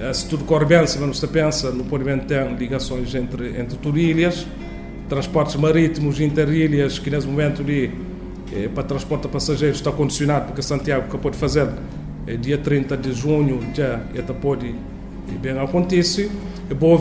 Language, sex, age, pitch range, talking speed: Portuguese, male, 40-59, 135-165 Hz, 150 wpm